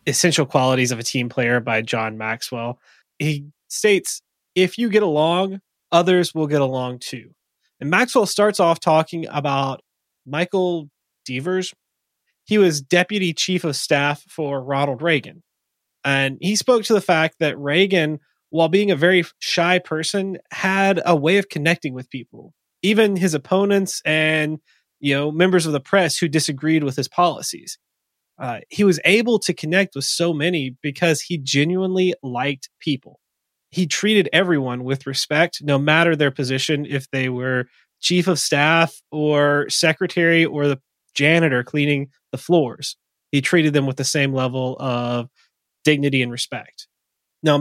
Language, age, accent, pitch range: English, 30-49, American, 135-175 Hz